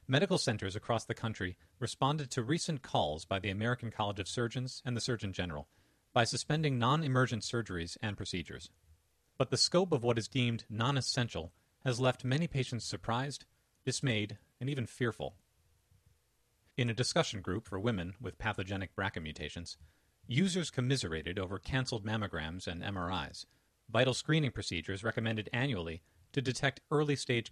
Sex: male